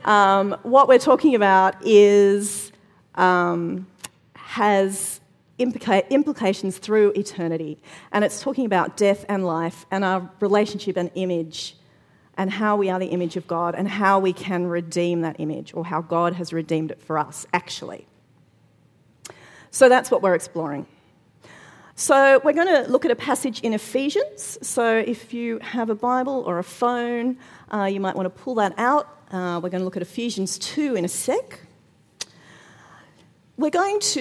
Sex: female